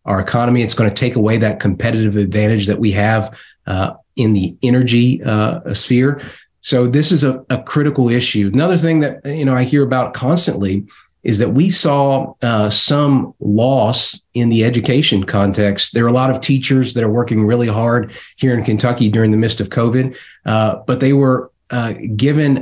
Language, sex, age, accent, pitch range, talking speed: English, male, 30-49, American, 105-130 Hz, 185 wpm